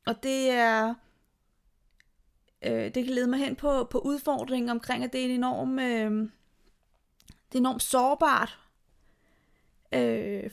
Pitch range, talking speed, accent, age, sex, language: 225-255 Hz, 135 wpm, native, 30-49, female, Danish